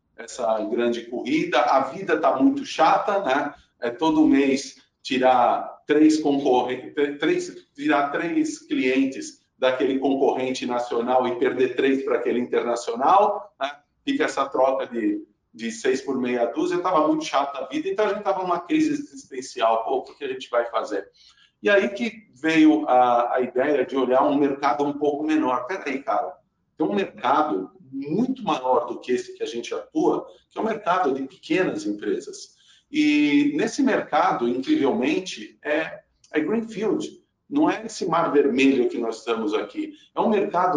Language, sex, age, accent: Portuguese, male, 50-69, Brazilian